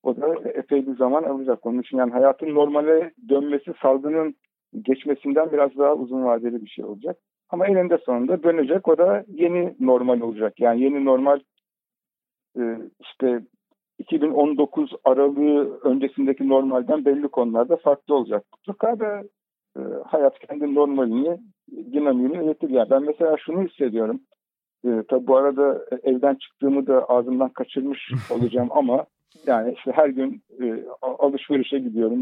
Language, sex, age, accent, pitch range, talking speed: Turkish, male, 60-79, native, 125-155 Hz, 140 wpm